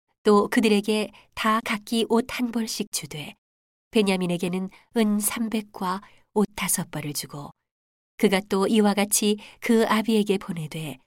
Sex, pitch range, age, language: female, 180-215 Hz, 40-59, Korean